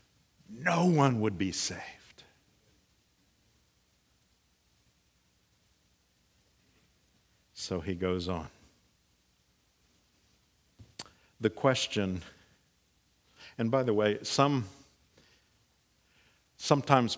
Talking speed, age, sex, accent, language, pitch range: 60 wpm, 60-79, male, American, English, 105-145 Hz